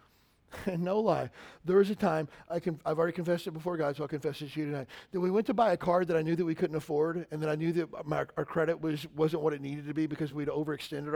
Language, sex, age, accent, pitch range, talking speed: English, male, 40-59, American, 165-245 Hz, 290 wpm